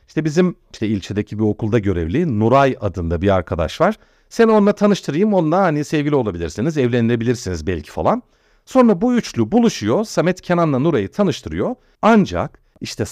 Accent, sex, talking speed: native, male, 145 wpm